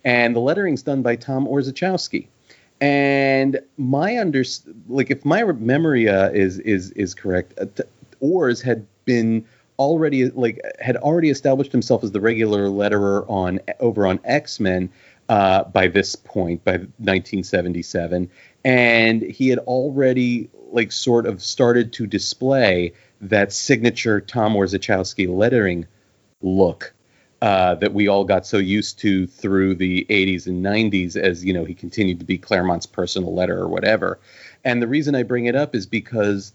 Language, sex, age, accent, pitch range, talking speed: English, male, 40-59, American, 95-125 Hz, 155 wpm